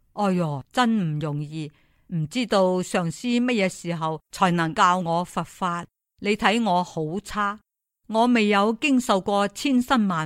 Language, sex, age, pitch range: Chinese, female, 50-69, 165-225 Hz